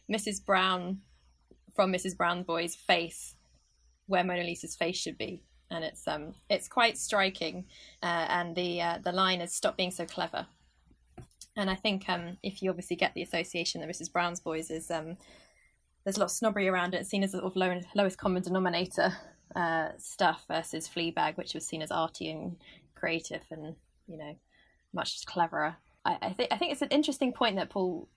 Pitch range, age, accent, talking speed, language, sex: 165-200 Hz, 20-39, British, 190 wpm, English, female